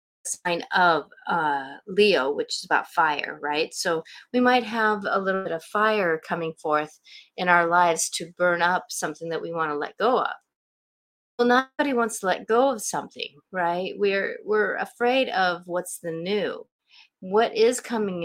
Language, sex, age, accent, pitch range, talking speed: English, female, 30-49, American, 160-220 Hz, 175 wpm